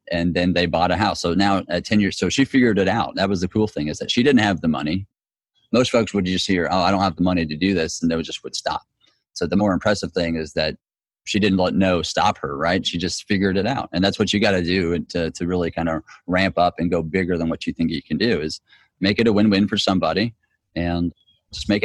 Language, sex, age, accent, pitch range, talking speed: English, male, 30-49, American, 85-105 Hz, 275 wpm